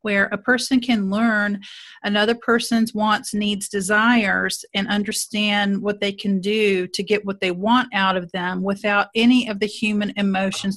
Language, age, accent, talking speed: English, 40-59, American, 165 wpm